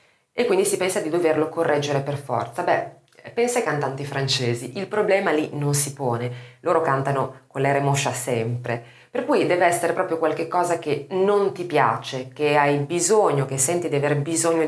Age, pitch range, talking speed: 30-49, 140-220 Hz, 180 wpm